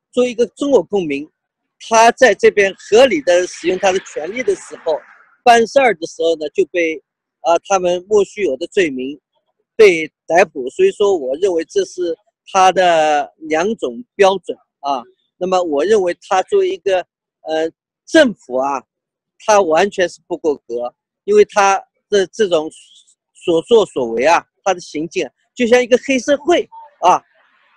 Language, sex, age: Chinese, male, 40-59